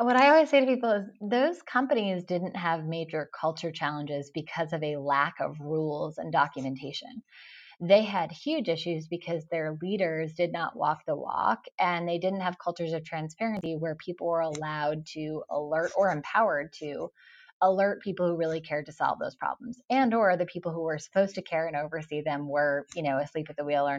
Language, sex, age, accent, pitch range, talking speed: English, female, 20-39, American, 150-190 Hz, 200 wpm